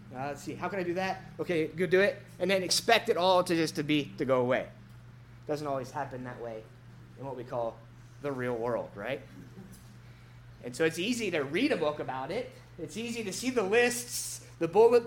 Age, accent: 30-49, American